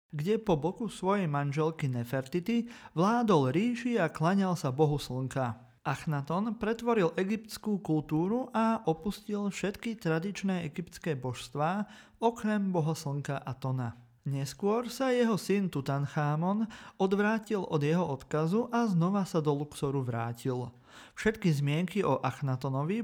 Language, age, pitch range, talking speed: Slovak, 30-49, 135-205 Hz, 120 wpm